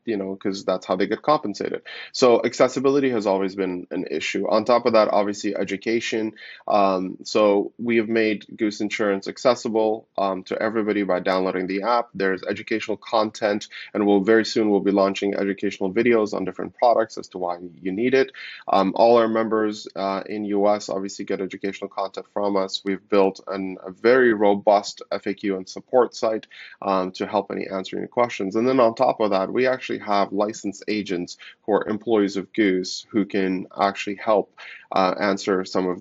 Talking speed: 185 wpm